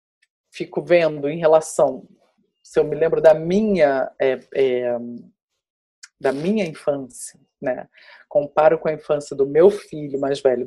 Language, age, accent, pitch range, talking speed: Portuguese, 40-59, Brazilian, 155-215 Hz, 140 wpm